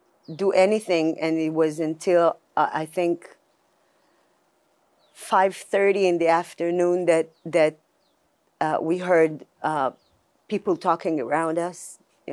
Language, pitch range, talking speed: English, 150-180 Hz, 120 wpm